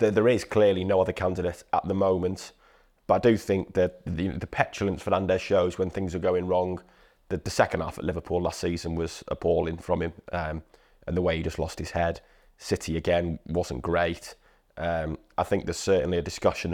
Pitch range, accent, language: 90-100 Hz, British, English